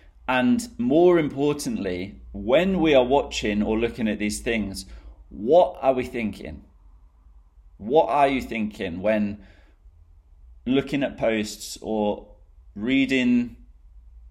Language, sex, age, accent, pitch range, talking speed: English, male, 30-49, British, 80-120 Hz, 110 wpm